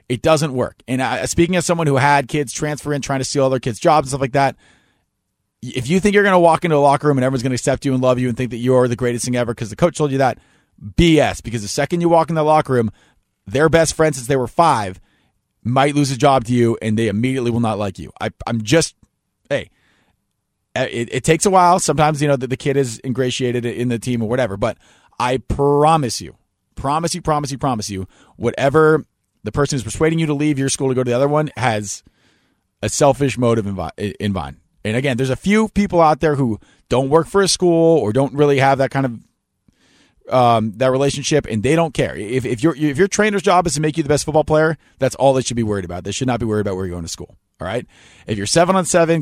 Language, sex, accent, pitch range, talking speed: English, male, American, 115-150 Hz, 250 wpm